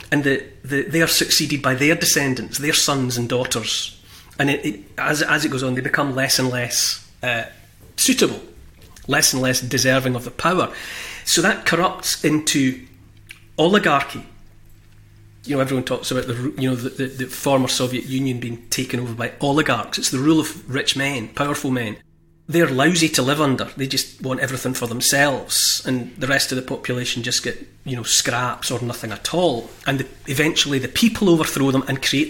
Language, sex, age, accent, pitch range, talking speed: English, male, 30-49, British, 120-145 Hz, 190 wpm